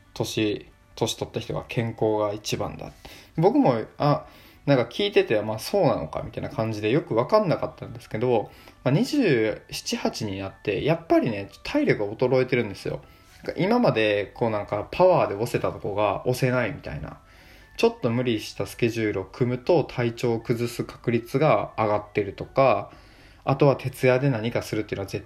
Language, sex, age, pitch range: Japanese, male, 20-39, 105-145 Hz